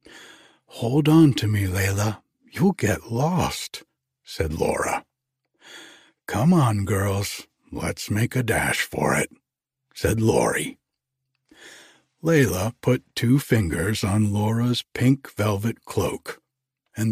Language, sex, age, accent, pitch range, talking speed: English, male, 60-79, American, 105-135 Hz, 110 wpm